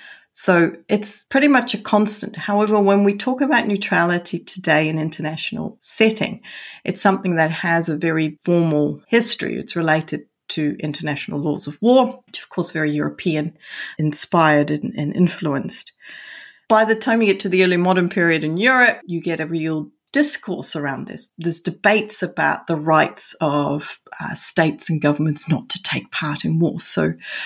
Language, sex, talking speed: English, female, 165 wpm